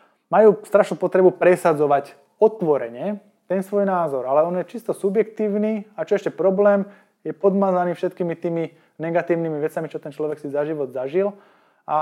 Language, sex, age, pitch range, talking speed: Slovak, male, 20-39, 145-175 Hz, 155 wpm